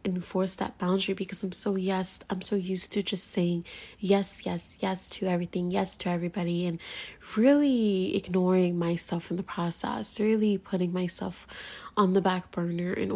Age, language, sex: 20-39, English, female